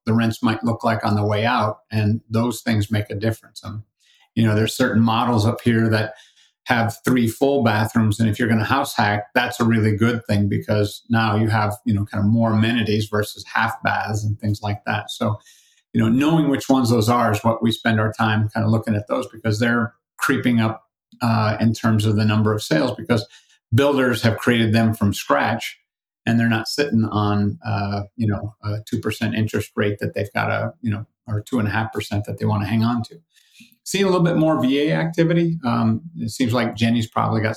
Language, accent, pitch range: English, American, 105-115 Hz